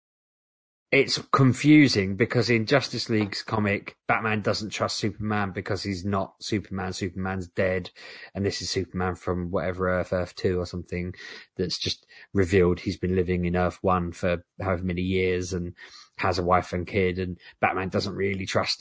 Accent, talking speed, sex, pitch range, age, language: British, 165 wpm, male, 95-110 Hz, 20-39, English